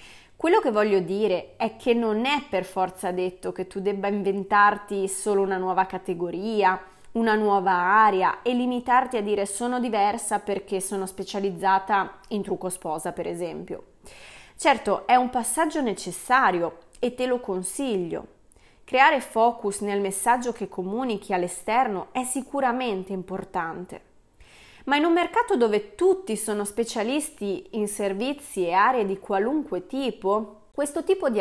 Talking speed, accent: 140 wpm, native